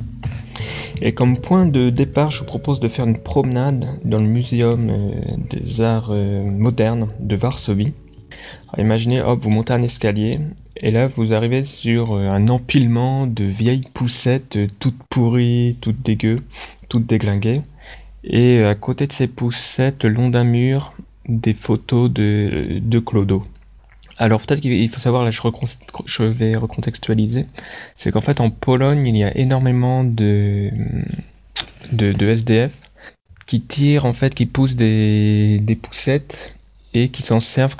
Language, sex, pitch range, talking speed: French, male, 110-125 Hz, 150 wpm